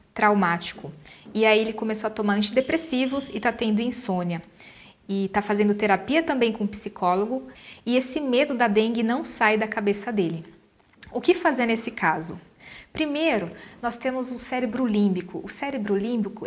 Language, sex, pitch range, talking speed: Portuguese, female, 210-275 Hz, 165 wpm